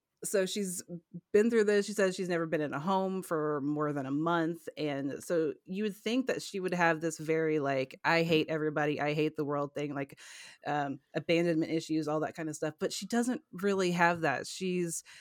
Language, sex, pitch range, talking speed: English, female, 150-180 Hz, 215 wpm